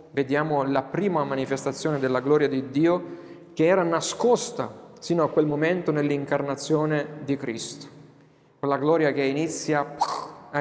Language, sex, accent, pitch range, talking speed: Italian, male, native, 135-160 Hz, 135 wpm